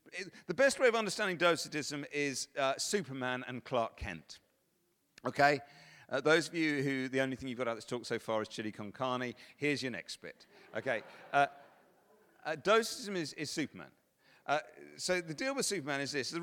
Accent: British